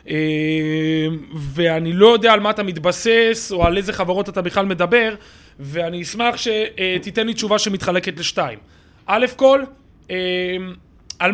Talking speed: 125 wpm